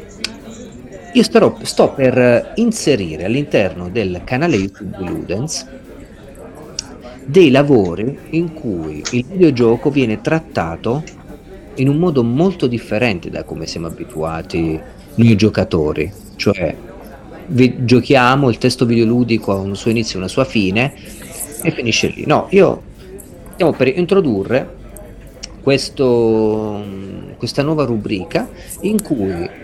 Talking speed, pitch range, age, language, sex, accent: 115 wpm, 105-150 Hz, 40-59, Italian, male, native